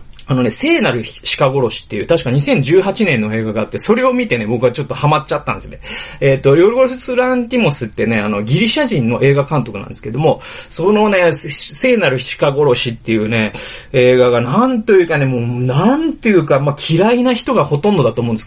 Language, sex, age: Japanese, male, 30-49